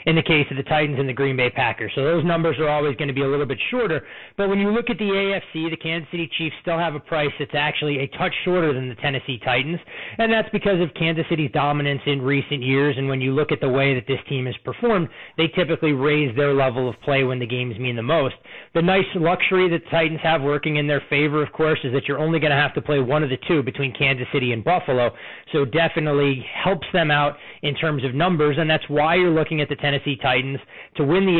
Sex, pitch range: male, 135-165 Hz